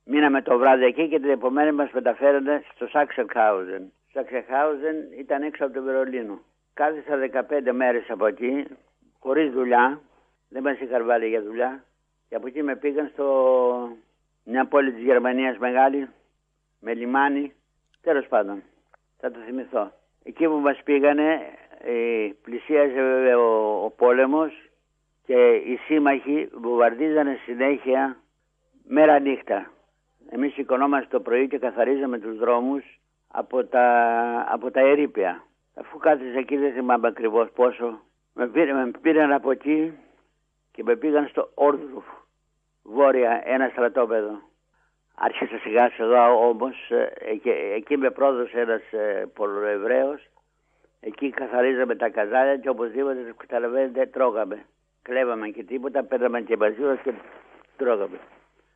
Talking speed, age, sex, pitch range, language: 130 wpm, 60-79, male, 120-145 Hz, Greek